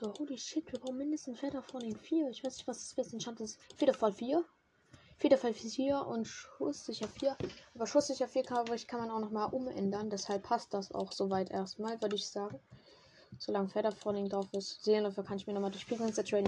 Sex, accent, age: female, German, 10-29